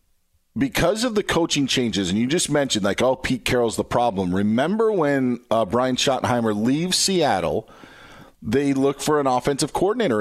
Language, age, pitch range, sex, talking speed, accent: English, 40-59, 115-150 Hz, male, 165 wpm, American